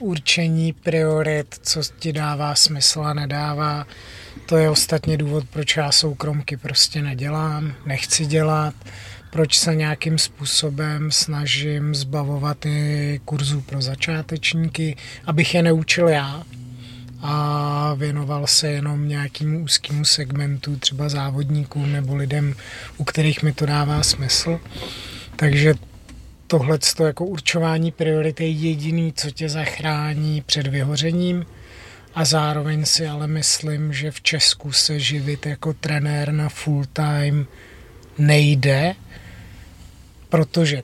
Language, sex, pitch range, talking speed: Czech, male, 140-155 Hz, 115 wpm